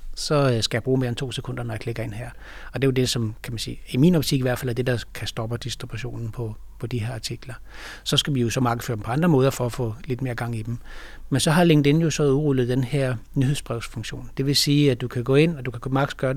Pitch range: 120-150 Hz